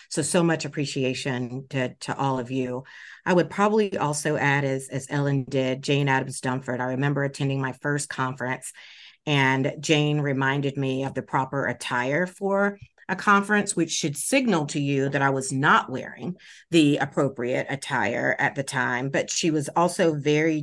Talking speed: 170 wpm